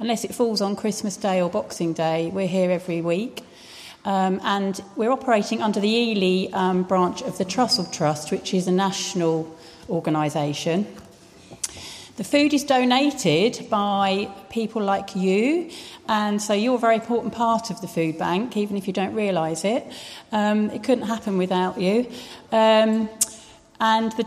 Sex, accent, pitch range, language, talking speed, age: female, British, 180-230 Hz, English, 160 wpm, 40-59